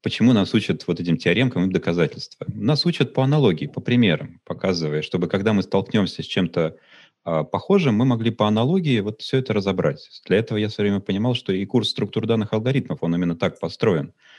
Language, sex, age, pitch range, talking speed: Russian, male, 30-49, 90-125 Hz, 190 wpm